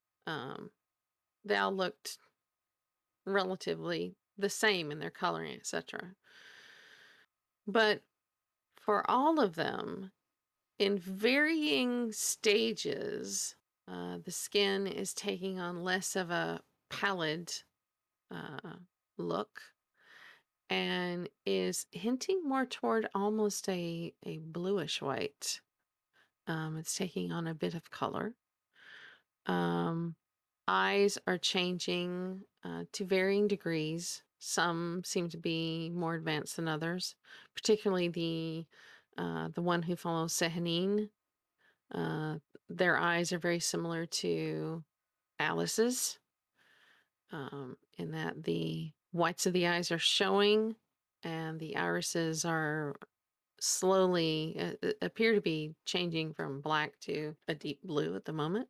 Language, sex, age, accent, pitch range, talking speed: English, female, 40-59, American, 150-200 Hz, 110 wpm